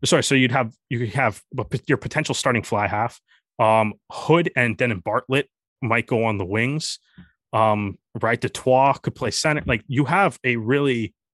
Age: 20-39